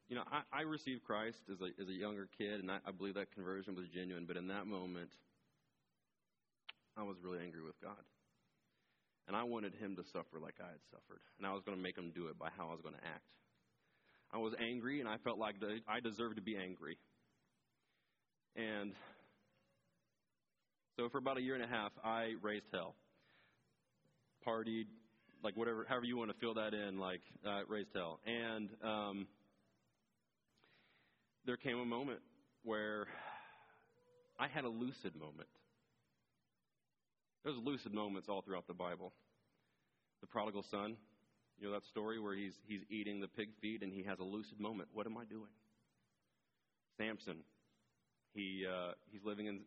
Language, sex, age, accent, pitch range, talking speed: English, male, 30-49, American, 95-115 Hz, 175 wpm